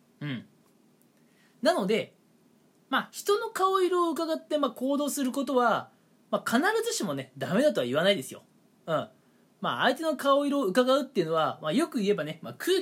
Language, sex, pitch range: Japanese, male, 180-280 Hz